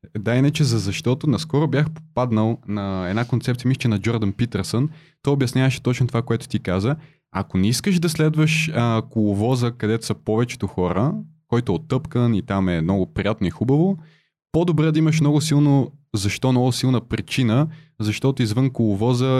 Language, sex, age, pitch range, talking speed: Bulgarian, male, 20-39, 100-130 Hz, 165 wpm